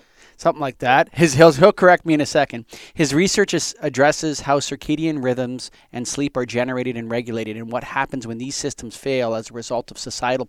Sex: male